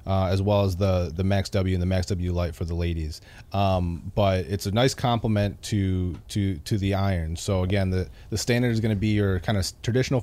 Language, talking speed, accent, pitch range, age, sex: English, 235 wpm, American, 95-115 Hz, 30-49, male